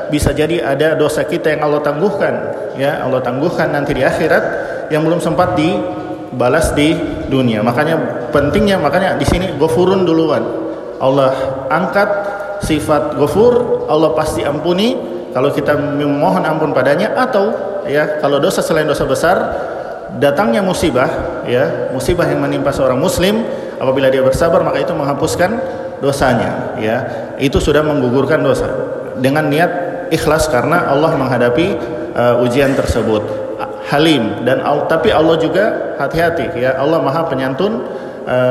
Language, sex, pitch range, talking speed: Indonesian, male, 120-160 Hz, 135 wpm